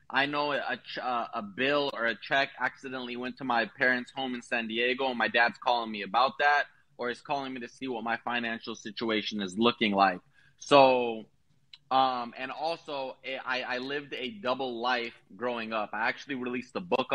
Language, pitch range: English, 115-135 Hz